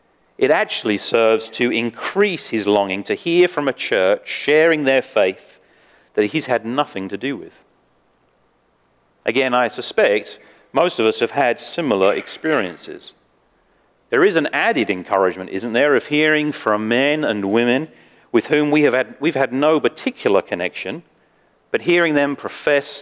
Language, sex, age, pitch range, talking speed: English, male, 40-59, 110-150 Hz, 155 wpm